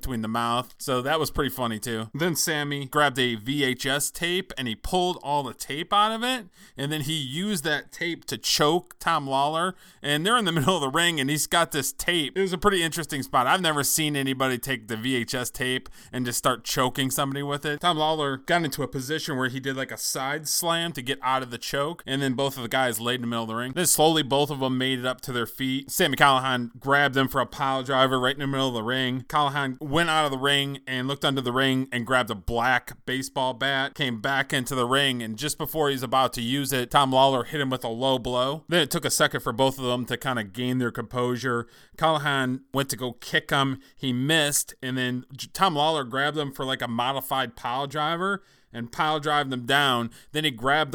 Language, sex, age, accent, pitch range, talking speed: English, male, 20-39, American, 130-150 Hz, 245 wpm